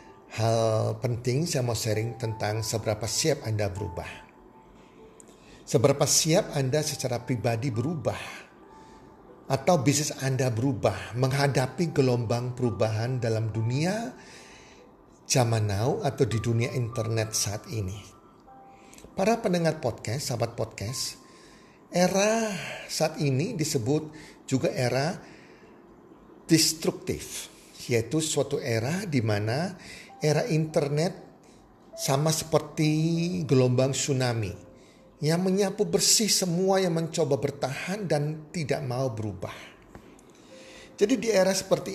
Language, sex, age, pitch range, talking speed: Indonesian, male, 50-69, 120-165 Hz, 100 wpm